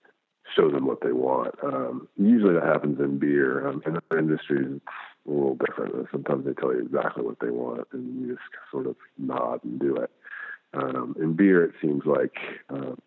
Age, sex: 50-69, male